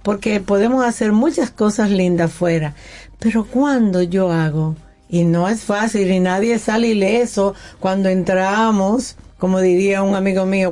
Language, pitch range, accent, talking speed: Spanish, 180-225 Hz, American, 145 wpm